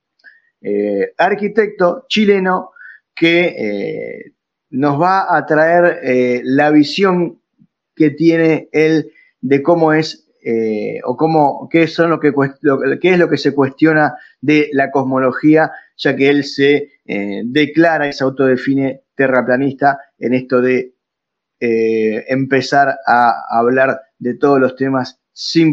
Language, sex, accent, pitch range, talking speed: Spanish, male, Argentinian, 130-175 Hz, 135 wpm